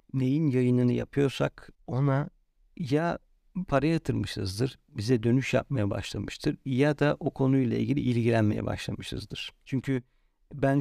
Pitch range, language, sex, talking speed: 120-145 Hz, Turkish, male, 110 wpm